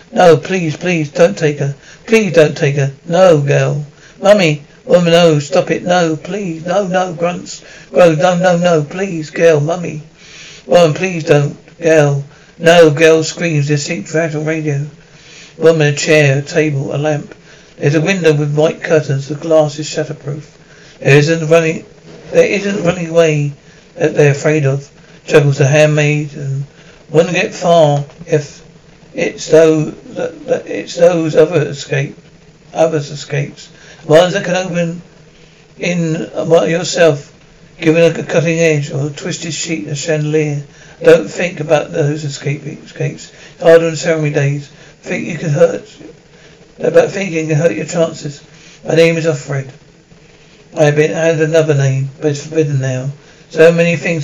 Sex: male